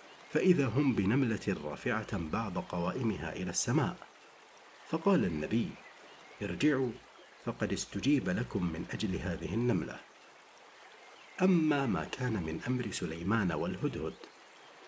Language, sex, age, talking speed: Arabic, male, 50-69, 100 wpm